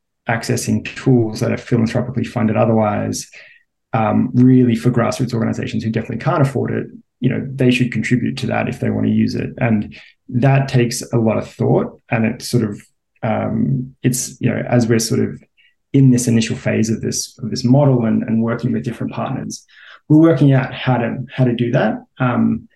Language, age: English, 20-39